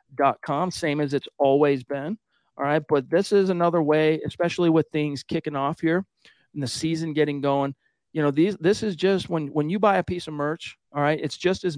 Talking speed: 225 wpm